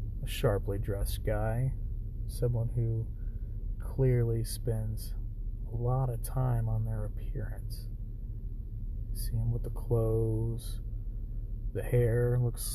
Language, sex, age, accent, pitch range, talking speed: English, male, 30-49, American, 105-120 Hz, 115 wpm